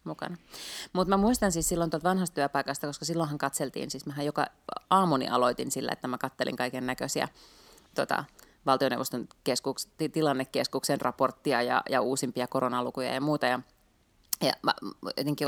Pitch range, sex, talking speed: 135-165 Hz, female, 145 wpm